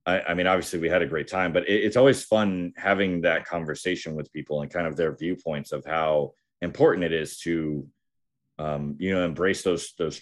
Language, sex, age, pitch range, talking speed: English, male, 30-49, 85-115 Hz, 205 wpm